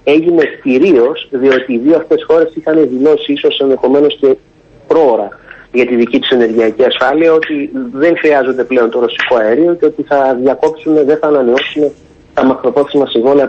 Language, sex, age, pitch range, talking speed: Greek, male, 30-49, 115-185 Hz, 160 wpm